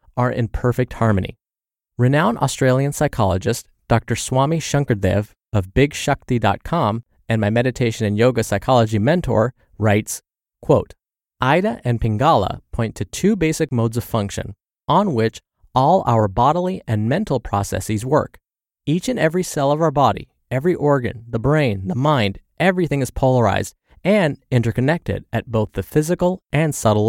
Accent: American